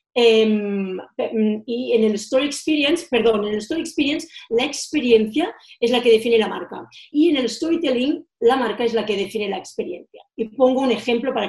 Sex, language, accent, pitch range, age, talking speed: female, Spanish, Spanish, 220-295 Hz, 40-59, 190 wpm